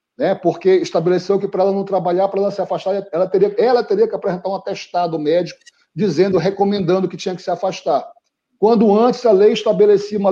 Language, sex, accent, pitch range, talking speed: Portuguese, male, Brazilian, 195-245 Hz, 200 wpm